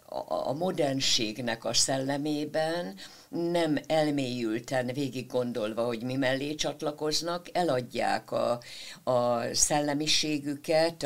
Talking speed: 90 wpm